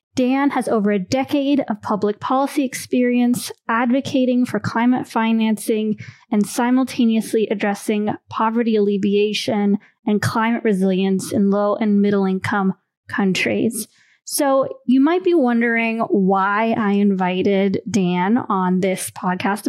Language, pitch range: English, 195-240 Hz